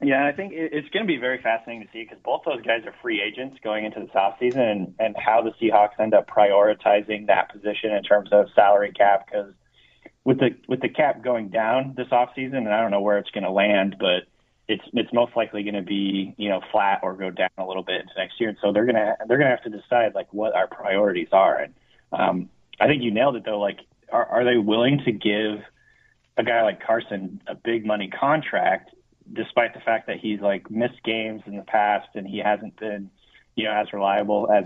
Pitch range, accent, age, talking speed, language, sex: 100-120 Hz, American, 30-49, 235 wpm, English, male